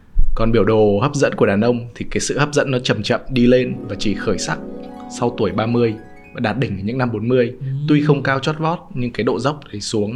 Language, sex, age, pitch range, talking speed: Vietnamese, male, 20-39, 100-125 Hz, 255 wpm